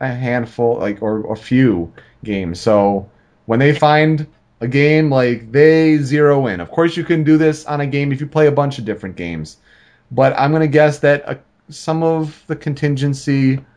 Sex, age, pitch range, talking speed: male, 30-49, 115-155 Hz, 195 wpm